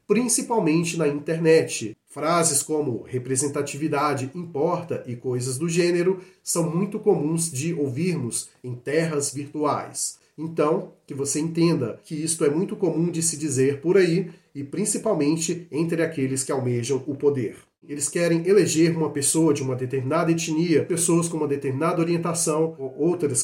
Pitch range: 145-175 Hz